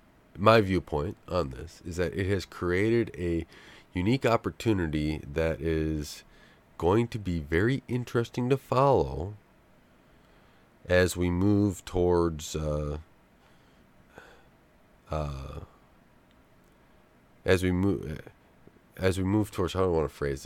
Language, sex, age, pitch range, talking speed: English, male, 30-49, 80-100 Hz, 120 wpm